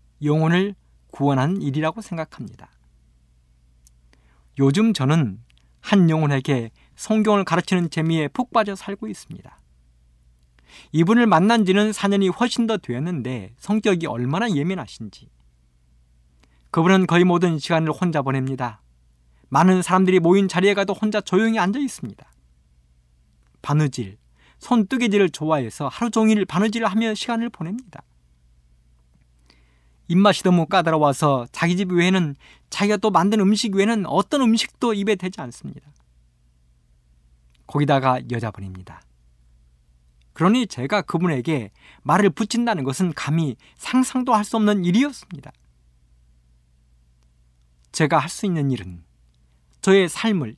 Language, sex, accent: Korean, male, native